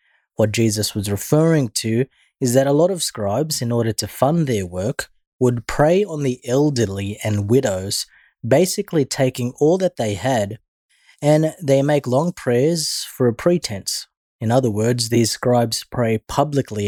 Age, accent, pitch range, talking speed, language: 20-39, Australian, 105-140 Hz, 160 wpm, English